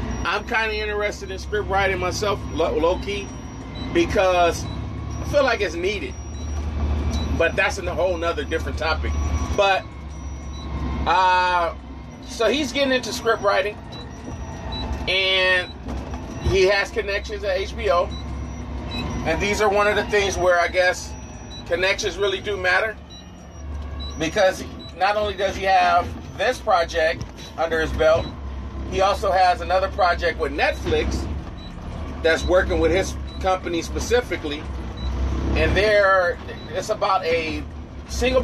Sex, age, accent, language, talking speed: male, 30-49, American, English, 125 wpm